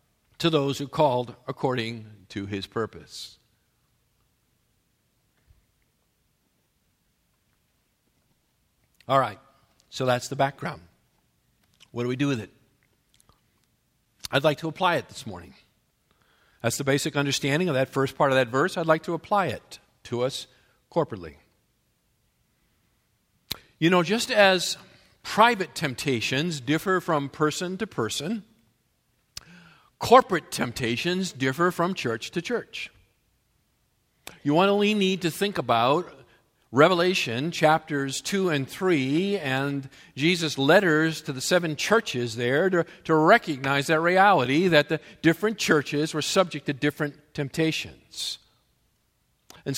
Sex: male